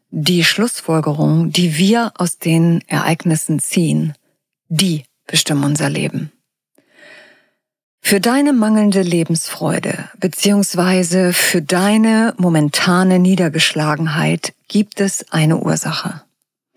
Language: German